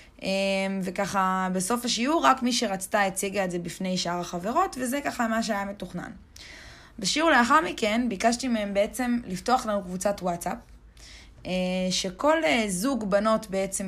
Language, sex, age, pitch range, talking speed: Hebrew, female, 20-39, 185-245 Hz, 130 wpm